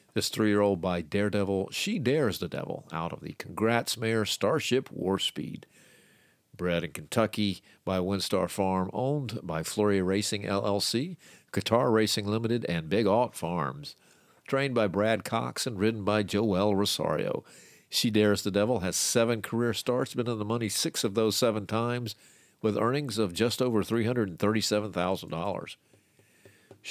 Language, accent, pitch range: English, American, 100-120 Hz